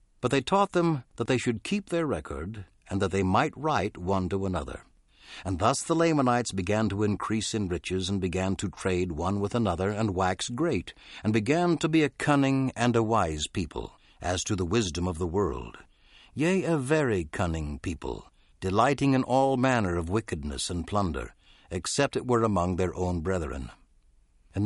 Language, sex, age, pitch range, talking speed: English, male, 60-79, 90-130 Hz, 185 wpm